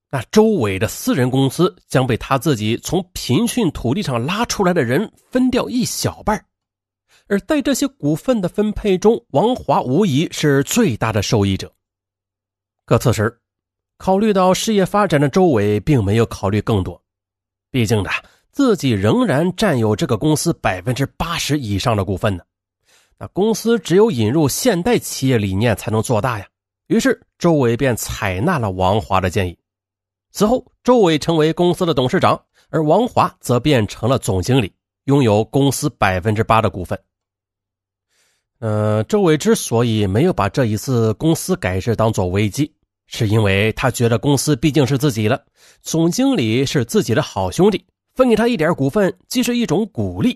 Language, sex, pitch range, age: Chinese, male, 105-175 Hz, 30-49